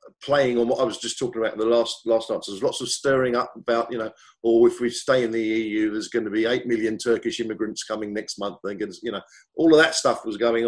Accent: British